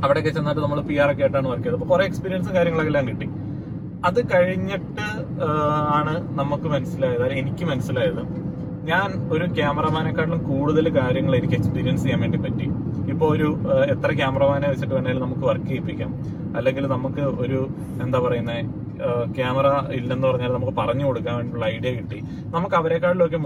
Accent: native